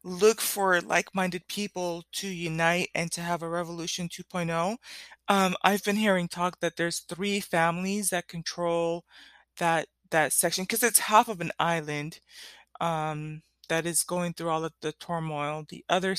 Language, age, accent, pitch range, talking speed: English, 20-39, American, 160-190 Hz, 155 wpm